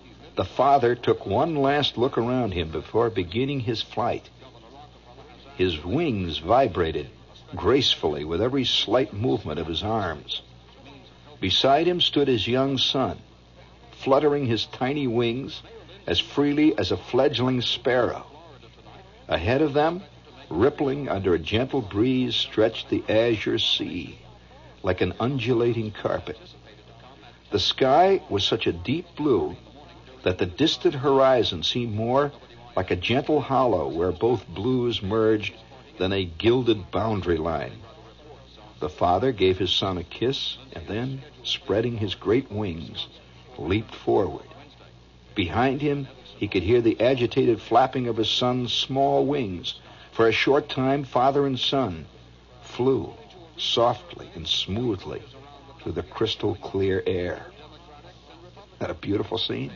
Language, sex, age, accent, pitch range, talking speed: English, male, 60-79, American, 90-135 Hz, 130 wpm